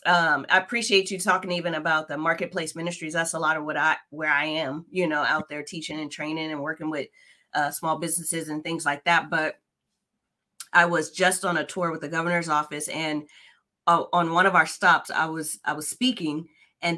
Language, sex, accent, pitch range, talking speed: English, female, American, 165-220 Hz, 210 wpm